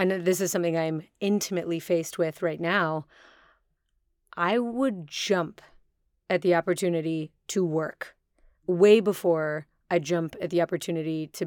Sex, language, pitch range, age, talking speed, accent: female, English, 160-185 Hz, 30-49, 135 wpm, American